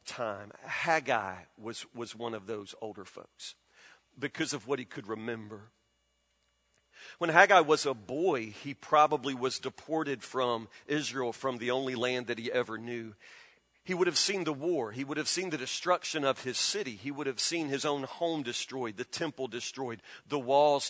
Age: 40-59